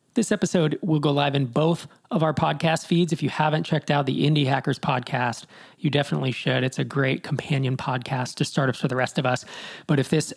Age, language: 40-59, English